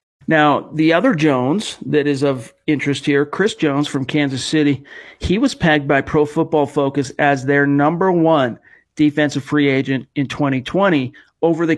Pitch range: 140-155 Hz